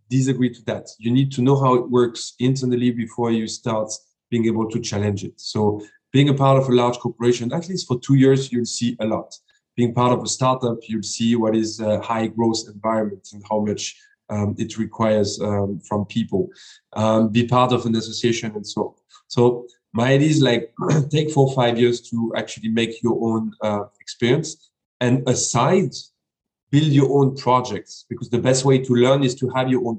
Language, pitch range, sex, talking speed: English, 110-125 Hz, male, 200 wpm